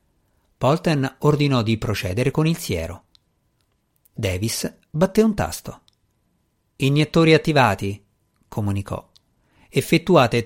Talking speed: 85 wpm